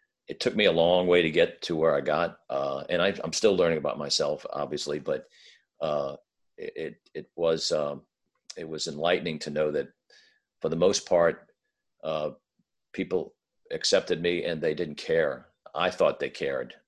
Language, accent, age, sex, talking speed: English, American, 50-69, male, 175 wpm